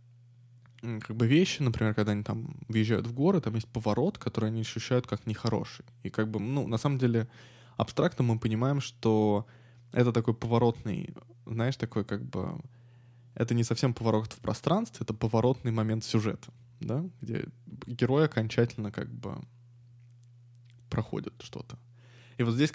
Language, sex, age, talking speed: Russian, male, 20-39, 150 wpm